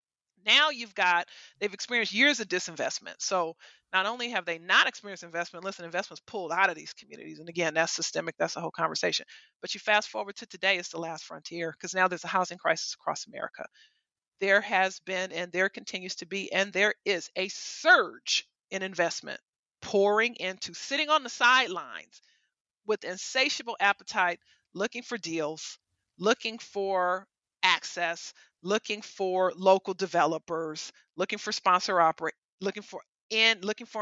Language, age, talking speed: English, 40-59, 160 wpm